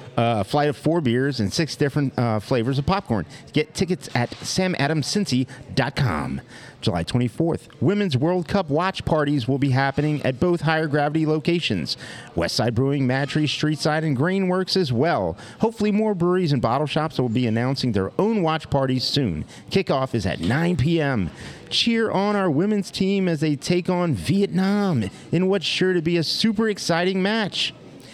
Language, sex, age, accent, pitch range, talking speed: English, male, 40-59, American, 125-180 Hz, 165 wpm